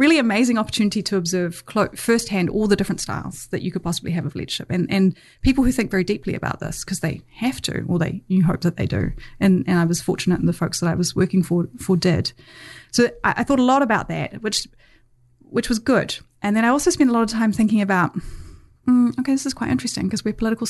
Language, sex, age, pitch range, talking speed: English, female, 30-49, 180-230 Hz, 245 wpm